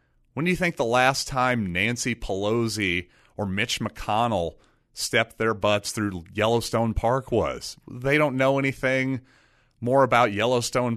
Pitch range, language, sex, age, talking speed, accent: 105-130 Hz, English, male, 30-49, 140 wpm, American